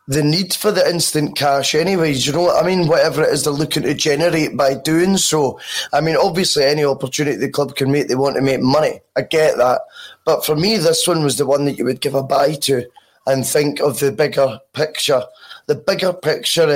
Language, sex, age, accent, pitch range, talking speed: English, male, 20-39, British, 140-180 Hz, 220 wpm